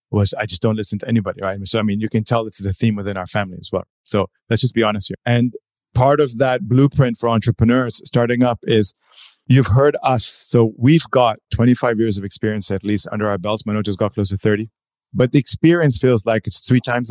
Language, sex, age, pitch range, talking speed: English, male, 30-49, 100-120 Hz, 240 wpm